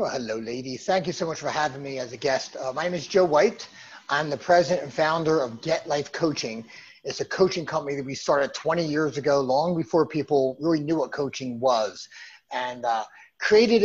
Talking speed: 210 wpm